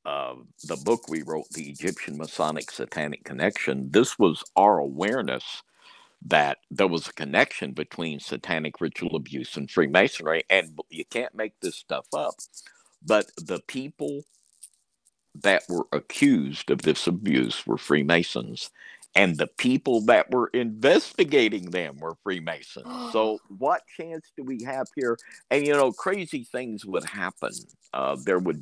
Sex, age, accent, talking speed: male, 60-79, American, 145 wpm